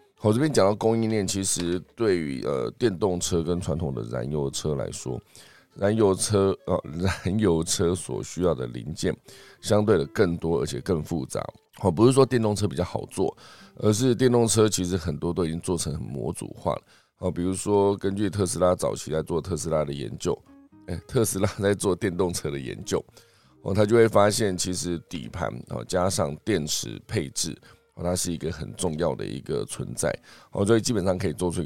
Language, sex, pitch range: Chinese, male, 85-105 Hz